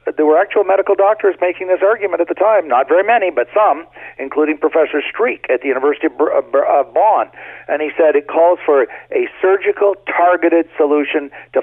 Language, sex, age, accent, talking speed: English, male, 50-69, American, 180 wpm